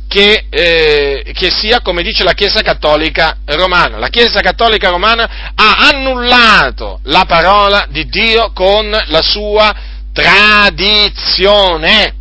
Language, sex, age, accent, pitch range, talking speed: Italian, male, 40-59, native, 150-220 Hz, 120 wpm